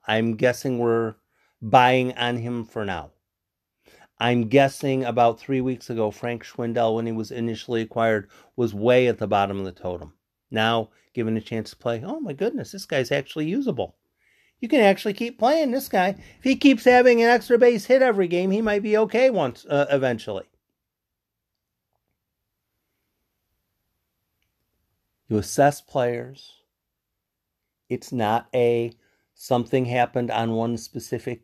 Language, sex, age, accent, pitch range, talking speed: English, male, 50-69, American, 100-125 Hz, 145 wpm